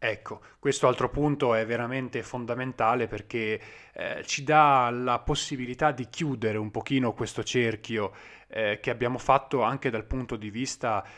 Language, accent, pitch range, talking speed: Italian, native, 110-135 Hz, 150 wpm